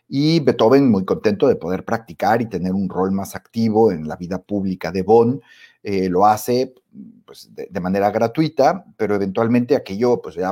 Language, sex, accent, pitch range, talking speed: Spanish, male, Mexican, 95-120 Hz, 165 wpm